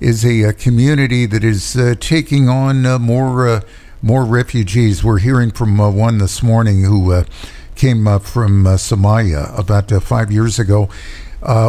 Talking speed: 175 wpm